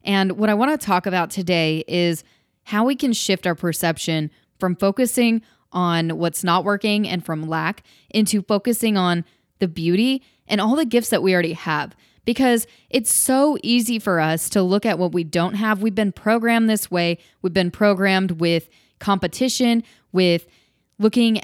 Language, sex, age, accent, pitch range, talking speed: English, female, 20-39, American, 175-230 Hz, 175 wpm